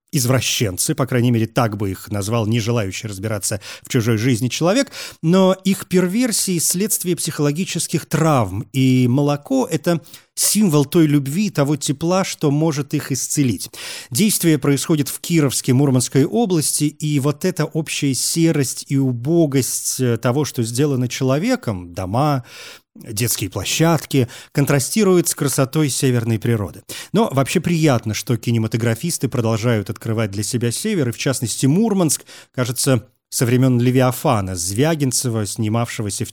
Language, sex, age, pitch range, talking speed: Russian, male, 30-49, 120-165 Hz, 130 wpm